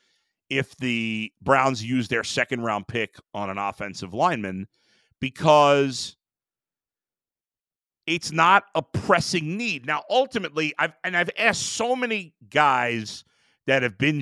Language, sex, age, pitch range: English, male, 40-59, 115-180 Hz